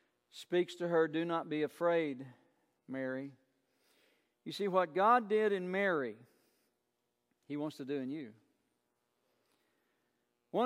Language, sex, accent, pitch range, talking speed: English, male, American, 165-235 Hz, 125 wpm